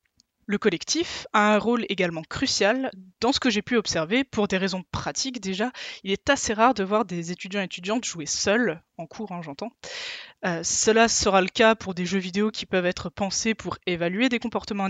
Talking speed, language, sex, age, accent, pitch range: 200 wpm, French, female, 20-39, French, 180-235 Hz